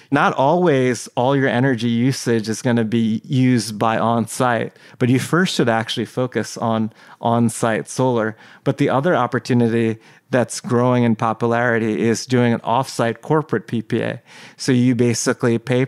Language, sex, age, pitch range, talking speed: English, male, 30-49, 115-125 Hz, 155 wpm